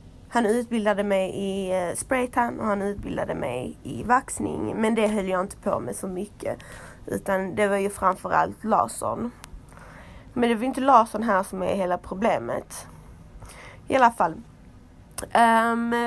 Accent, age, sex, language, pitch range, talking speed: native, 20-39, female, Swedish, 185-230 Hz, 150 wpm